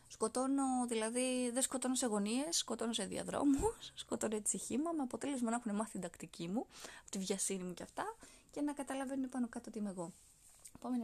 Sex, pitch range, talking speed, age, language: female, 205-255 Hz, 190 wpm, 20-39, Greek